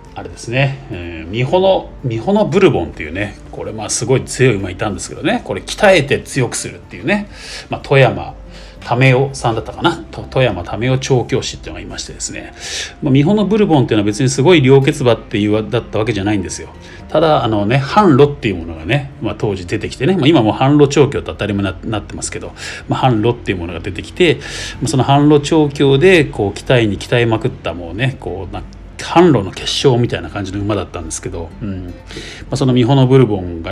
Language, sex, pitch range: Japanese, male, 100-140 Hz